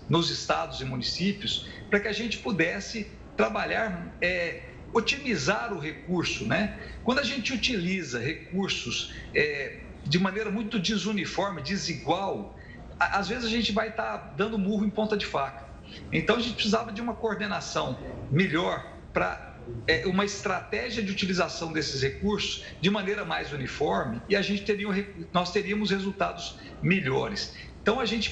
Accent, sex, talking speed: Brazilian, male, 135 wpm